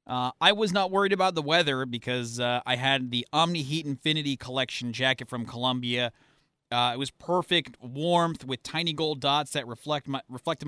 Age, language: 30-49, English